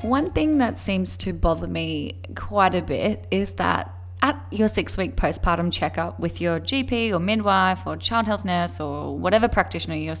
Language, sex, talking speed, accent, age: English, female, 175 wpm, Australian, 10-29